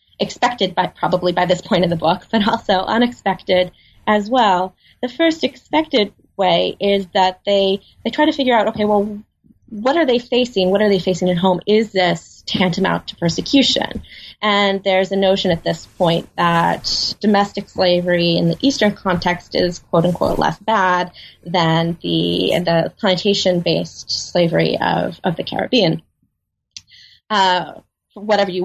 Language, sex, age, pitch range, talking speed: English, female, 20-39, 180-230 Hz, 155 wpm